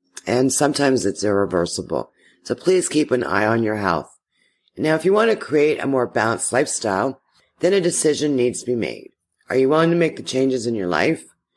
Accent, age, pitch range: American, 40-59, 120-165 Hz